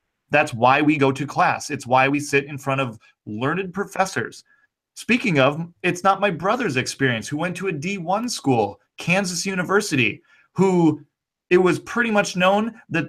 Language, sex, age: English, male, 30-49